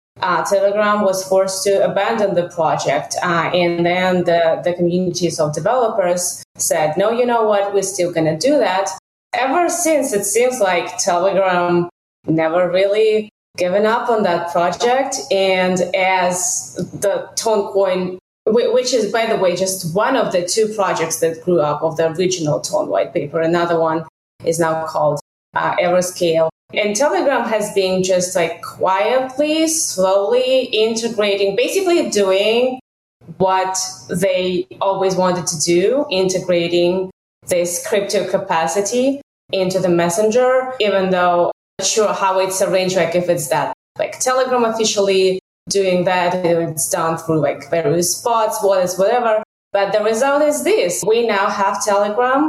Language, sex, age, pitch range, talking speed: English, female, 20-39, 175-215 Hz, 145 wpm